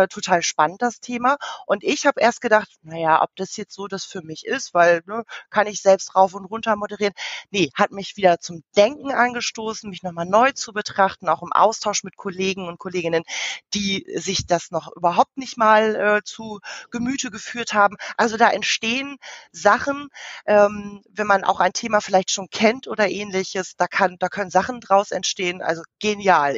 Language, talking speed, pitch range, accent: German, 185 wpm, 185-230 Hz, German